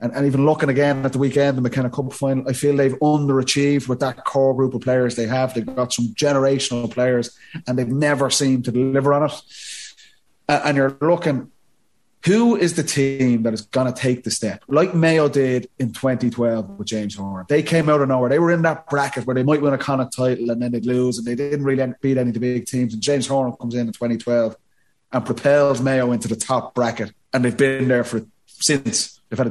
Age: 30-49